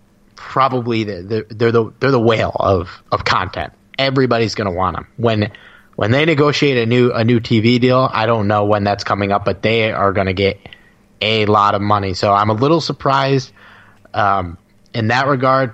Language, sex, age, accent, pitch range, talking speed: English, male, 30-49, American, 100-115 Hz, 190 wpm